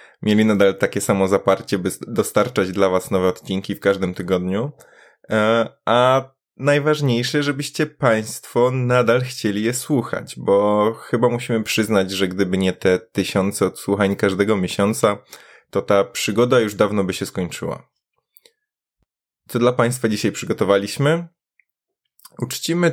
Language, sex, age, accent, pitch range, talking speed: Polish, male, 20-39, native, 100-120 Hz, 125 wpm